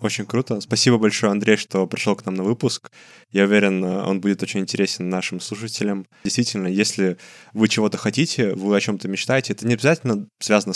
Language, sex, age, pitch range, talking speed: Russian, male, 20-39, 95-110 Hz, 180 wpm